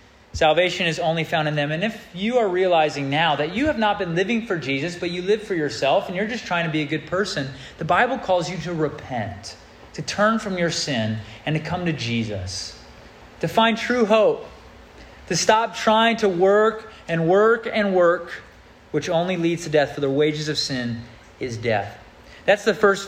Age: 30-49